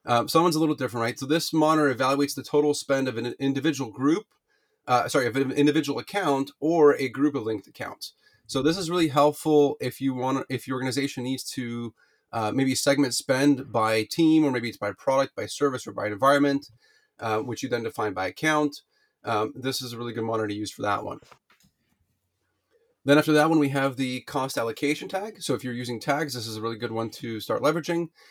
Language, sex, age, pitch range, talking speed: English, male, 30-49, 120-145 Hz, 215 wpm